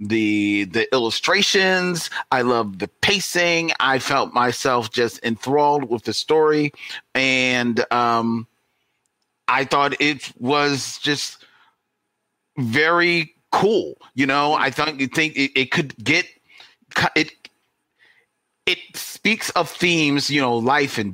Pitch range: 125-150 Hz